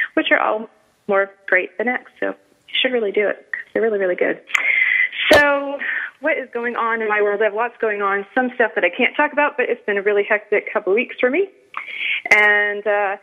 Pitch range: 185-265 Hz